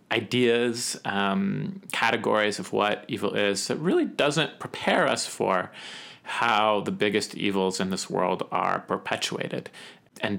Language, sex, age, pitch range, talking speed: English, male, 30-49, 100-130 Hz, 135 wpm